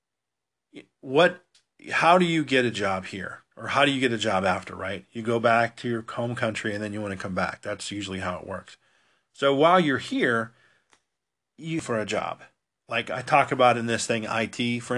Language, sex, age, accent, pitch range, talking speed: English, male, 40-59, American, 100-125 Hz, 210 wpm